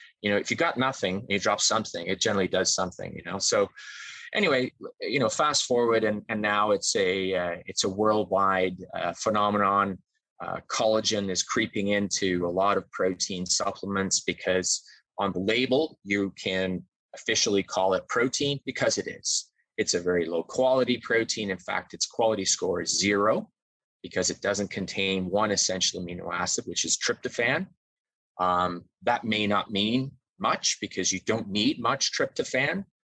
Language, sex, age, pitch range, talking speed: English, male, 20-39, 95-115 Hz, 165 wpm